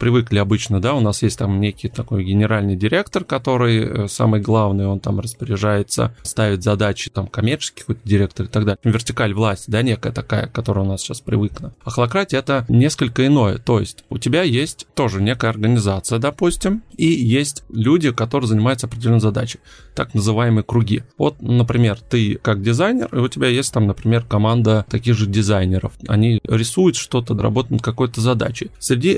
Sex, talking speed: male, 165 wpm